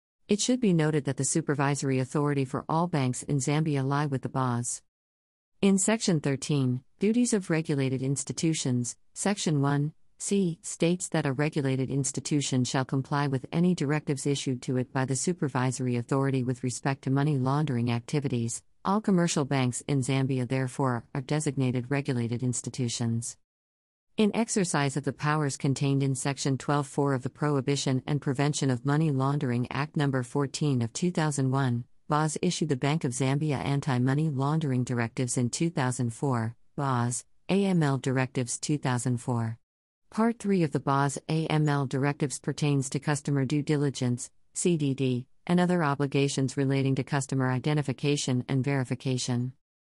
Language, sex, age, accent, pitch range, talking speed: English, female, 50-69, American, 130-150 Hz, 145 wpm